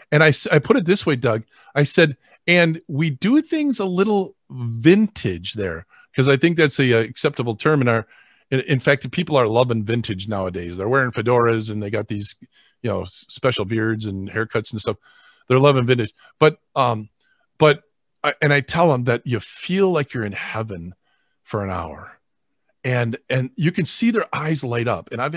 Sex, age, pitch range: male, 40-59, 115-160 Hz